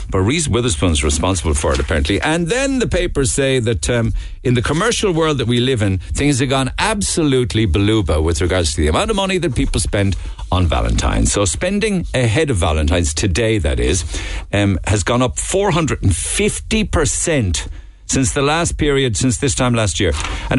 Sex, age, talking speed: male, 60-79, 185 wpm